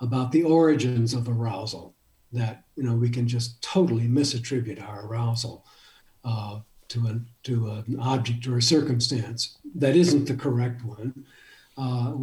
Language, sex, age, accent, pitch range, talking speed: English, male, 60-79, American, 115-140 Hz, 150 wpm